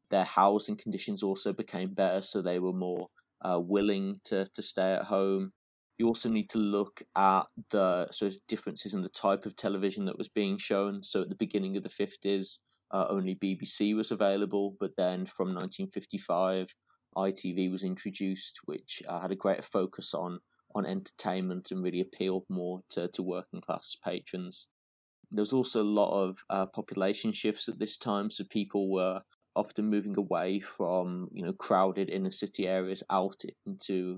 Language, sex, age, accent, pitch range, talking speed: English, male, 30-49, British, 95-105 Hz, 170 wpm